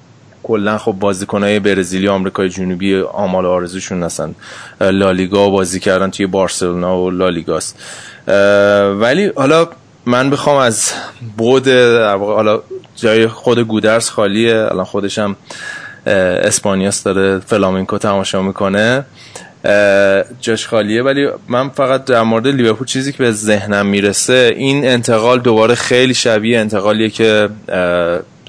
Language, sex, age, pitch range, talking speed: Persian, male, 20-39, 100-115 Hz, 115 wpm